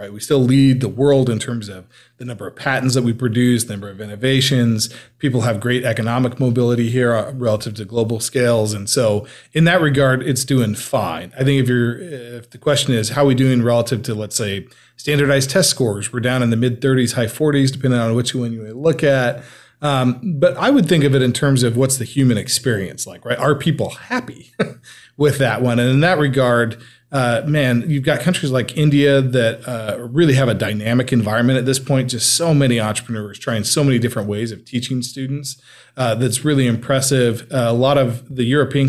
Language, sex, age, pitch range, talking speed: English, male, 40-59, 115-135 Hz, 205 wpm